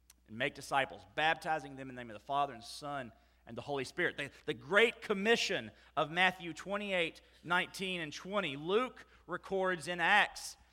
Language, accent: English, American